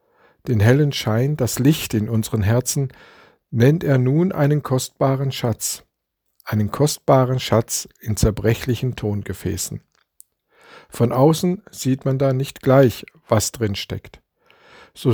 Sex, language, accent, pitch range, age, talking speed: male, German, German, 110-140 Hz, 50-69, 125 wpm